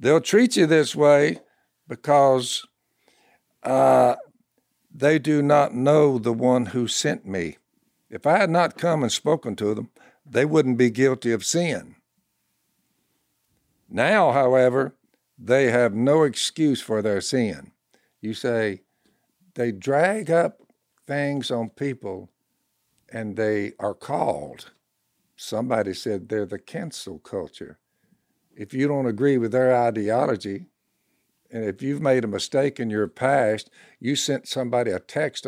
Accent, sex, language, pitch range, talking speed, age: American, male, English, 115-150 Hz, 135 wpm, 60-79